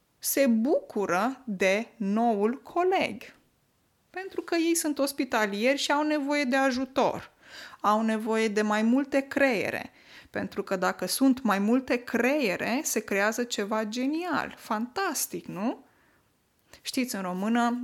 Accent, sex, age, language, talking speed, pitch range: native, female, 20-39, Romanian, 125 wpm, 210-275 Hz